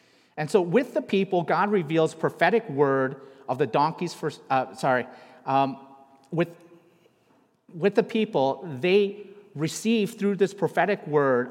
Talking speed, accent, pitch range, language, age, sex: 135 wpm, American, 130-190 Hz, English, 40-59, male